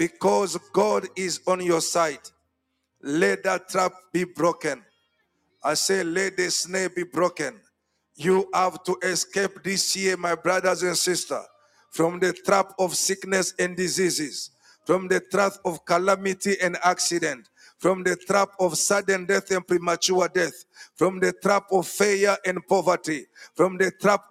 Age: 50-69